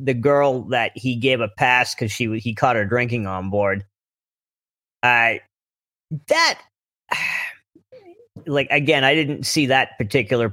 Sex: male